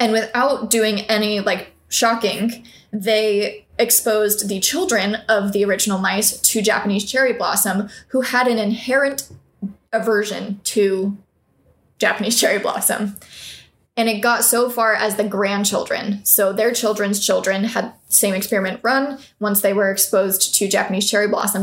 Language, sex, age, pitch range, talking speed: English, female, 20-39, 200-230 Hz, 140 wpm